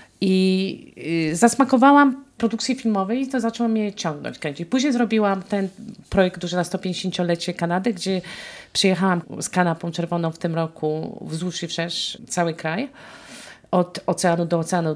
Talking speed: 140 wpm